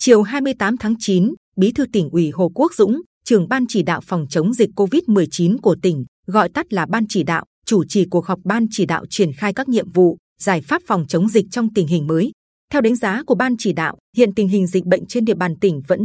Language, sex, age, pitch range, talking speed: Vietnamese, female, 20-39, 180-225 Hz, 245 wpm